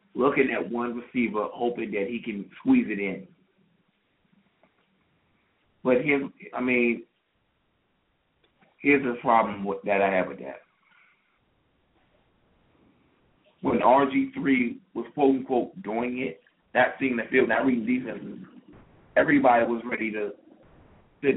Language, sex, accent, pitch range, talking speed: English, male, American, 105-140 Hz, 125 wpm